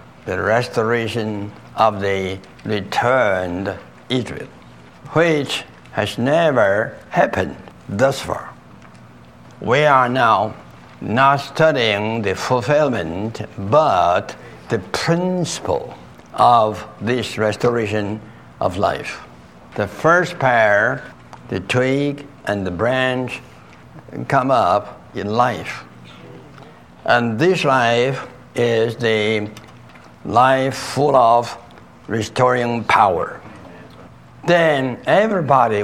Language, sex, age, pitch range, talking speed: English, male, 60-79, 100-135 Hz, 85 wpm